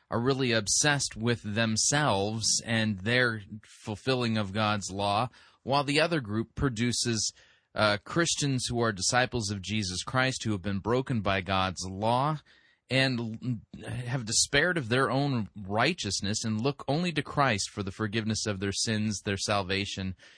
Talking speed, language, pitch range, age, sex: 150 wpm, English, 100-125 Hz, 30-49, male